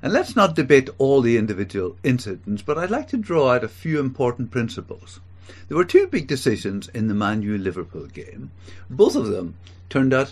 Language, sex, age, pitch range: English, male, 60-79, 95-150 Hz